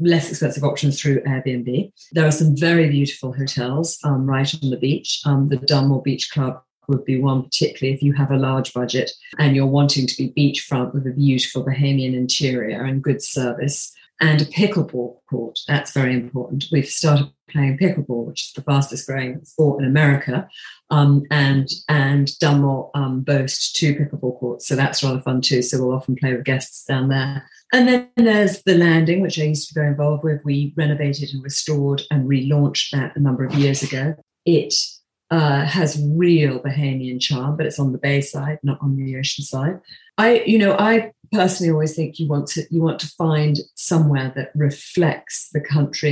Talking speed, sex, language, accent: 190 wpm, female, English, British